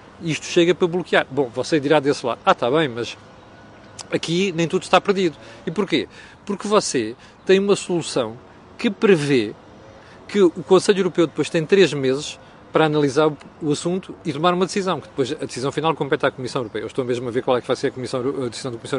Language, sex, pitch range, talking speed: Portuguese, male, 135-185 Hz, 215 wpm